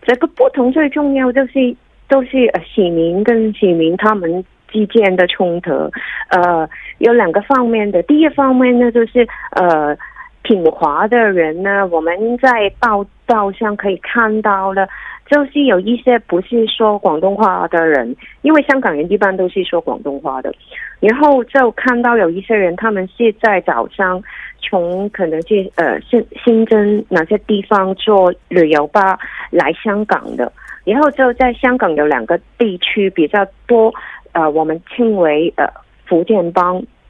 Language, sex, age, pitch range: Korean, female, 30-49, 180-240 Hz